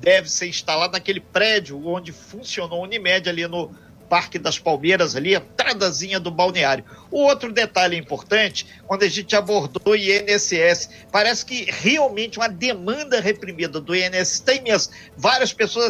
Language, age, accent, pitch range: Portuguese, 50-69, Brazilian, 175-220 Hz